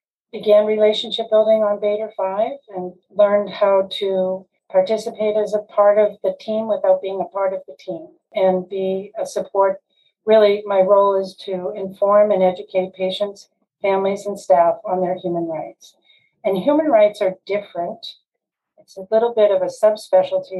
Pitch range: 185-210 Hz